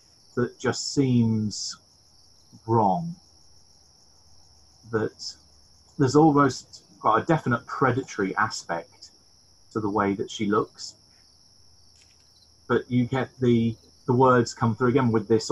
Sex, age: male, 30-49